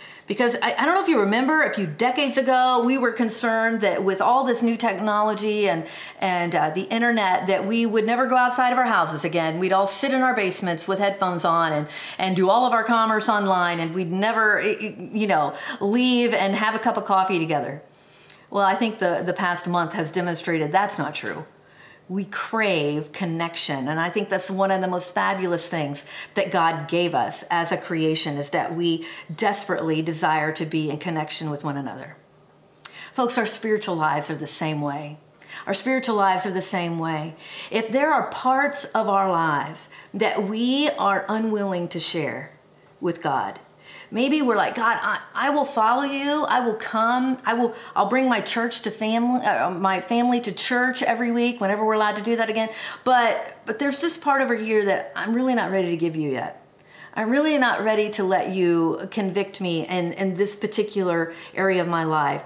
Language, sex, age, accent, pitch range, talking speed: English, female, 40-59, American, 175-230 Hz, 200 wpm